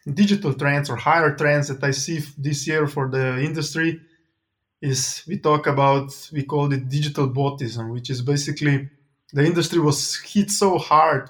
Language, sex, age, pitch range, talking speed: English, male, 20-39, 135-160 Hz, 170 wpm